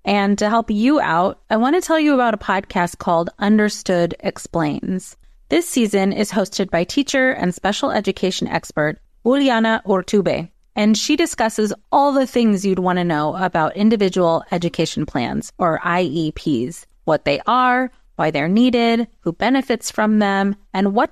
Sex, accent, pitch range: female, American, 180-225 Hz